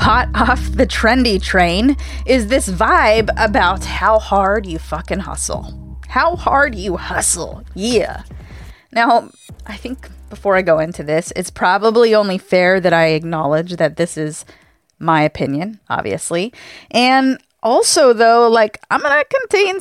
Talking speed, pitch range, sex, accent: 145 wpm, 170-225 Hz, female, American